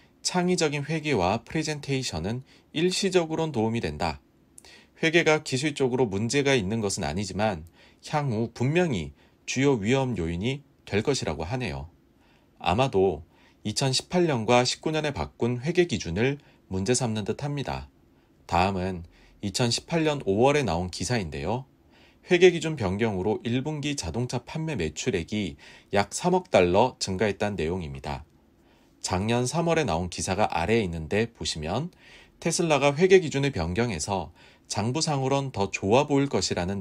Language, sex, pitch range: Korean, male, 85-145 Hz